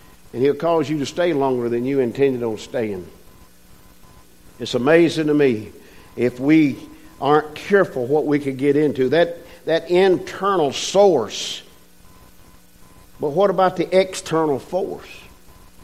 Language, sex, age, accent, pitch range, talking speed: English, male, 50-69, American, 150-225 Hz, 135 wpm